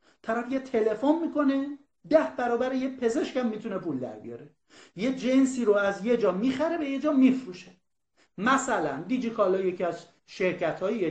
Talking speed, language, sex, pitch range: 145 wpm, Persian, male, 195-275 Hz